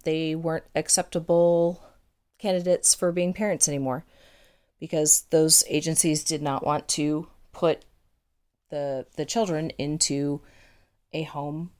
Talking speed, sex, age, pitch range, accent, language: 110 wpm, female, 30-49, 150-180 Hz, American, English